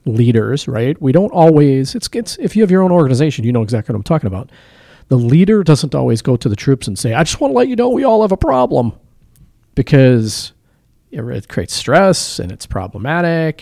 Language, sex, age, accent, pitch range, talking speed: English, male, 40-59, American, 115-150 Hz, 220 wpm